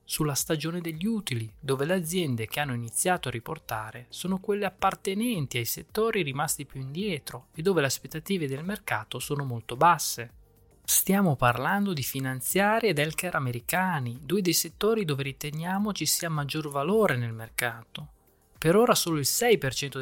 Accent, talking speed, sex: native, 155 wpm, male